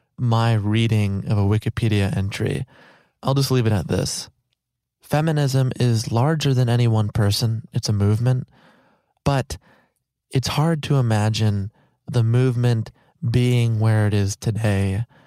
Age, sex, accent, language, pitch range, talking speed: 20-39, male, American, English, 110-130 Hz, 135 wpm